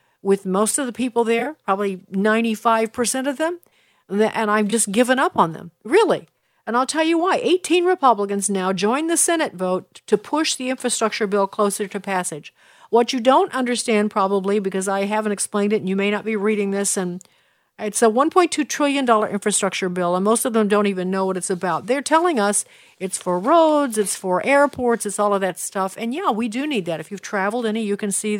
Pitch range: 200-290 Hz